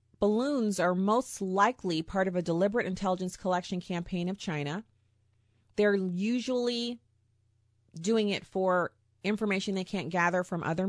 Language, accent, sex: English, American, female